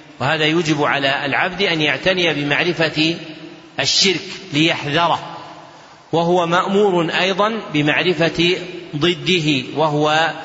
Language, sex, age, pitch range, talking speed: Arabic, male, 40-59, 150-175 Hz, 85 wpm